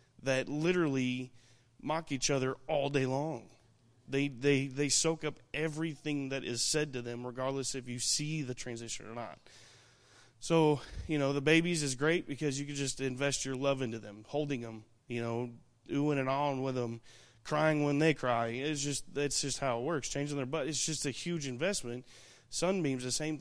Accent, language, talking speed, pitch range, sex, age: American, English, 190 wpm, 120-145 Hz, male, 30-49